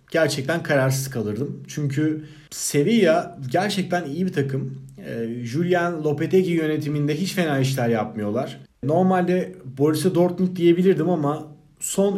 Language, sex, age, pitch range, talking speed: Turkish, male, 40-59, 135-175 Hz, 115 wpm